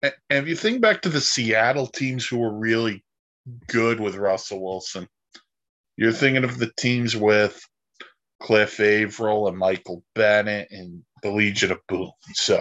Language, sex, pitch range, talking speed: English, male, 105-135 Hz, 155 wpm